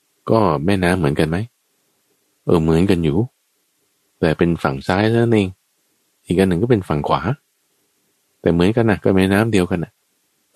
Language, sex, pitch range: Thai, male, 70-90 Hz